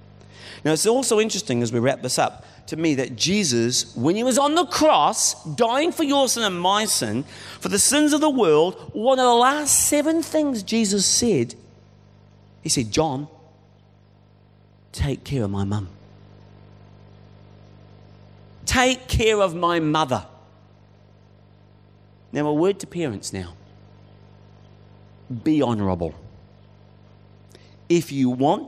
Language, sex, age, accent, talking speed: English, male, 40-59, British, 135 wpm